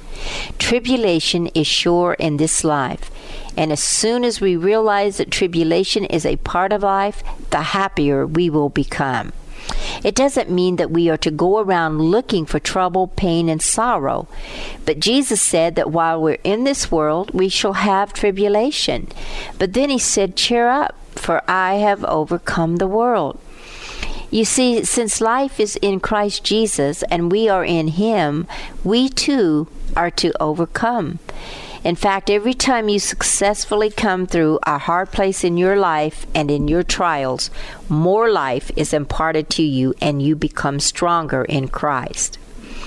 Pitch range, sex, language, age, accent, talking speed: 155-205 Hz, female, English, 60-79, American, 155 wpm